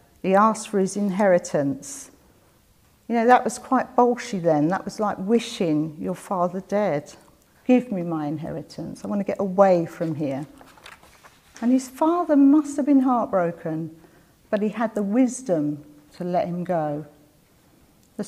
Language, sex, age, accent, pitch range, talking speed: English, female, 50-69, British, 160-215 Hz, 155 wpm